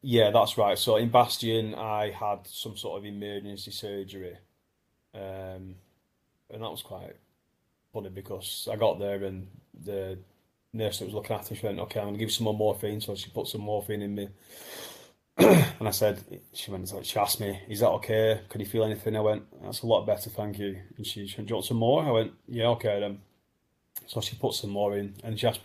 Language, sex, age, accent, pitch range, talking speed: English, male, 20-39, British, 100-115 Hz, 220 wpm